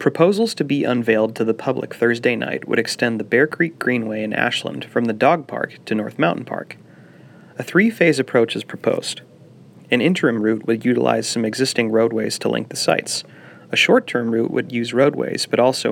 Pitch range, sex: 115-145 Hz, male